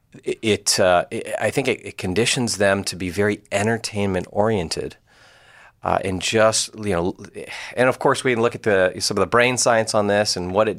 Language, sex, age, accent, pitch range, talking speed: English, male, 30-49, American, 90-115 Hz, 200 wpm